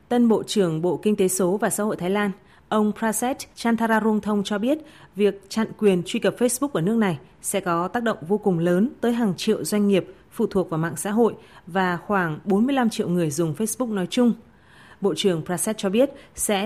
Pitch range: 185-220 Hz